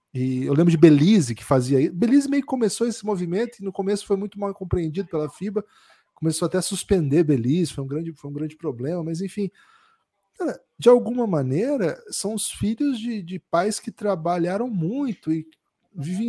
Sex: male